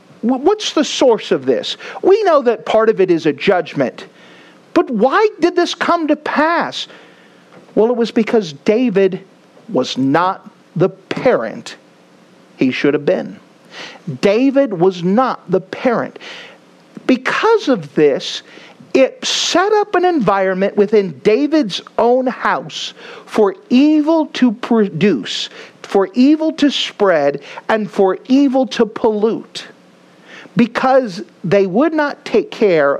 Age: 50-69